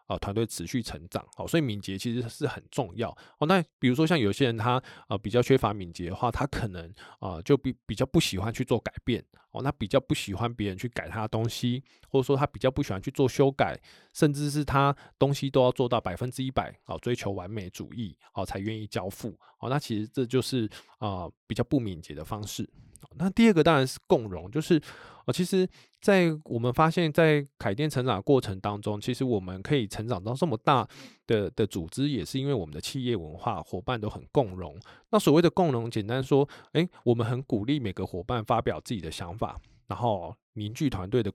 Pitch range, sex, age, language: 105-140 Hz, male, 20-39, Chinese